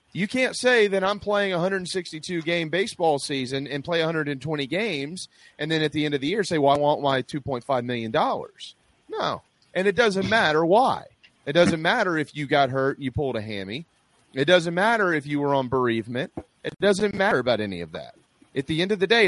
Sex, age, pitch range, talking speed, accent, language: male, 30-49, 125-180 Hz, 210 wpm, American, English